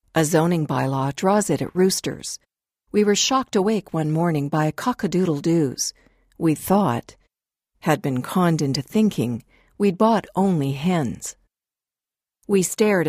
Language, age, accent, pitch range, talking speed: English, 50-69, American, 145-190 Hz, 140 wpm